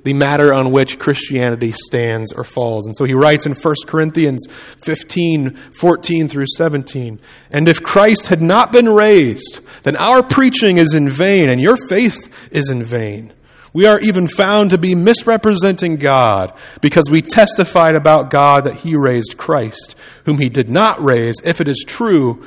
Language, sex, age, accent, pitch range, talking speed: English, male, 40-59, American, 125-165 Hz, 170 wpm